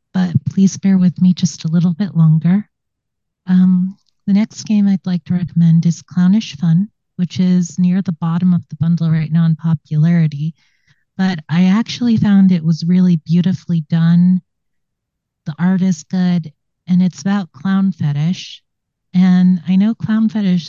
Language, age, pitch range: English, 30-49, 165-190 Hz